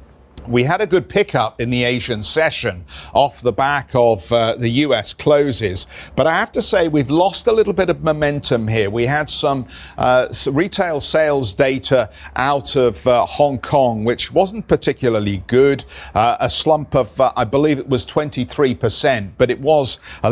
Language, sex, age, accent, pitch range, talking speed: English, male, 50-69, British, 110-145 Hz, 175 wpm